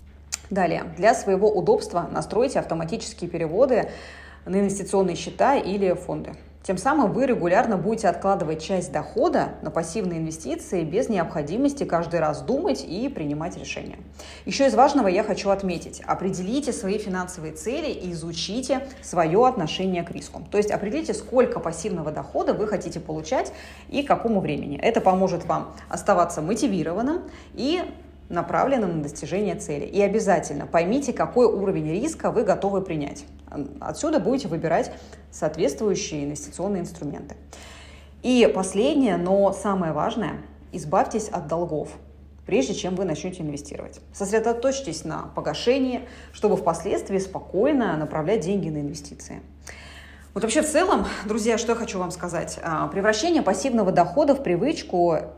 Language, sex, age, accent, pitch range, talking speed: Russian, female, 20-39, native, 160-225 Hz, 135 wpm